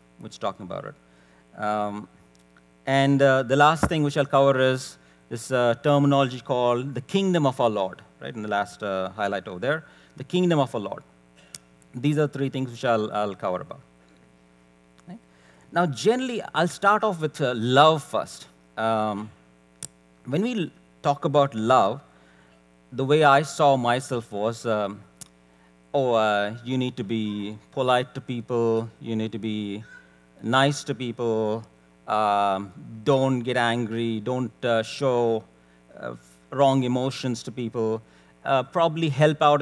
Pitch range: 95-140 Hz